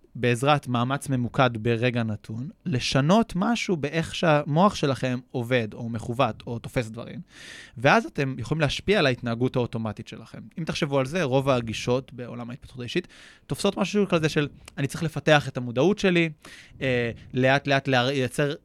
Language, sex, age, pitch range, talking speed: Hebrew, male, 20-39, 120-145 Hz, 150 wpm